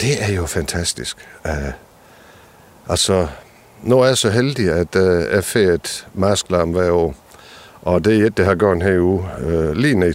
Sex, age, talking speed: male, 60-79, 190 wpm